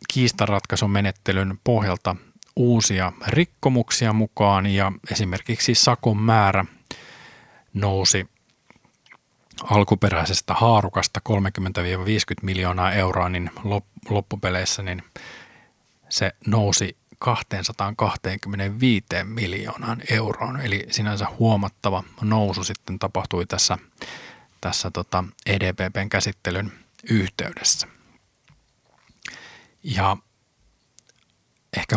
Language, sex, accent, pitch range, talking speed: Finnish, male, native, 95-115 Hz, 70 wpm